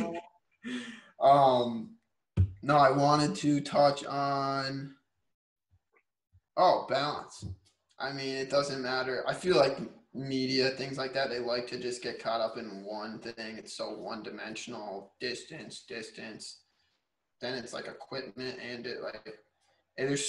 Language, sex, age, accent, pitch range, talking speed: English, male, 20-39, American, 120-140 Hz, 135 wpm